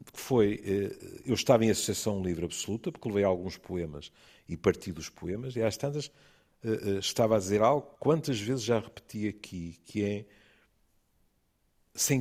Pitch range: 80-110 Hz